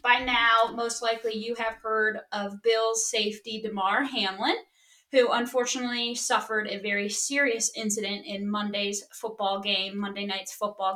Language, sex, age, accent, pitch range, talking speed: English, female, 20-39, American, 205-260 Hz, 140 wpm